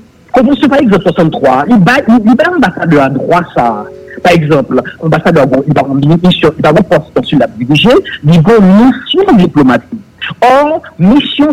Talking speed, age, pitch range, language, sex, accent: 160 wpm, 50-69, 160-230 Hz, English, male, French